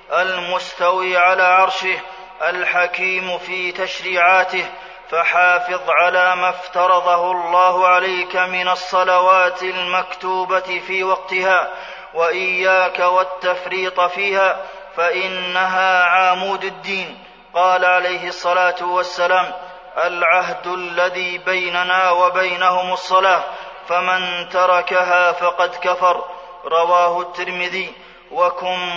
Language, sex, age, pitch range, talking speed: Arabic, male, 30-49, 170-185 Hz, 80 wpm